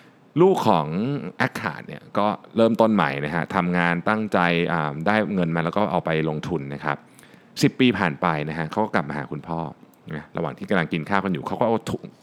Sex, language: male, Thai